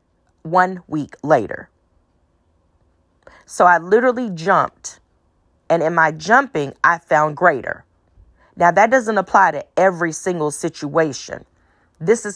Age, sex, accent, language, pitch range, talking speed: 40-59, female, American, English, 130-185 Hz, 115 wpm